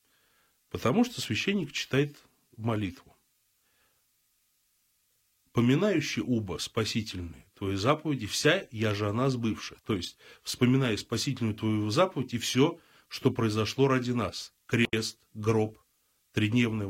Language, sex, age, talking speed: Russian, male, 30-49, 110 wpm